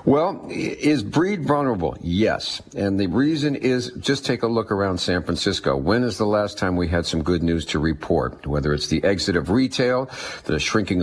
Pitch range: 95-130 Hz